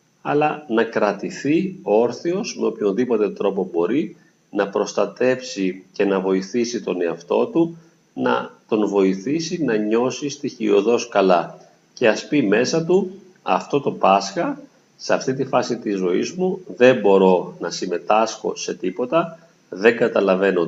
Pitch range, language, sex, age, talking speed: 100-155 Hz, Greek, male, 40-59, 135 wpm